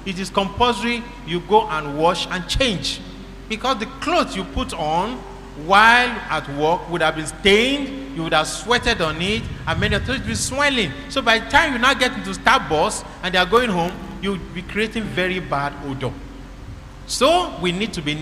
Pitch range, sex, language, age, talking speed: 145-220 Hz, male, English, 50-69, 195 wpm